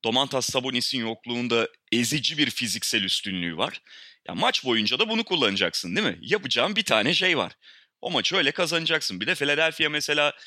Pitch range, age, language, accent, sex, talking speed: 115-175 Hz, 30-49, Turkish, native, male, 165 wpm